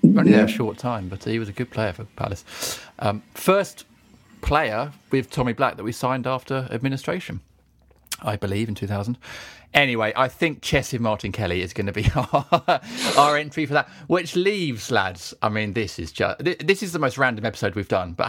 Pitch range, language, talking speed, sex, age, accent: 105-155 Hz, English, 195 wpm, male, 40-59, British